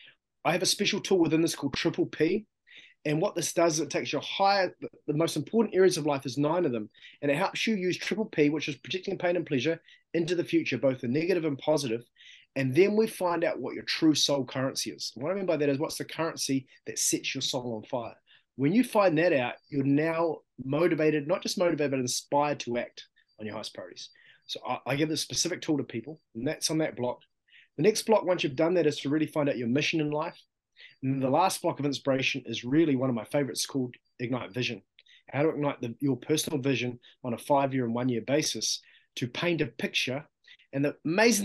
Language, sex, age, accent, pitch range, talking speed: English, male, 20-39, Australian, 130-170 Hz, 230 wpm